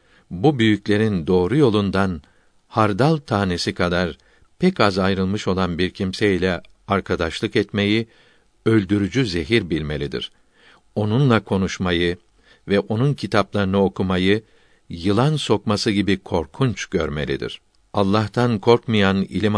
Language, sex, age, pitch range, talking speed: Turkish, male, 60-79, 95-115 Hz, 100 wpm